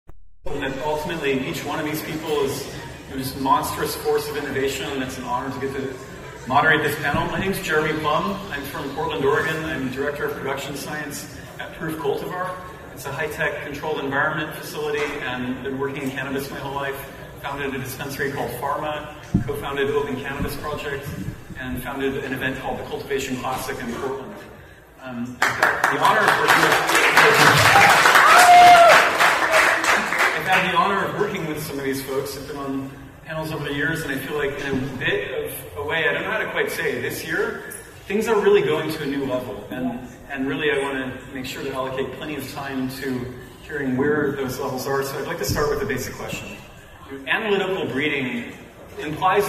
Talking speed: 195 wpm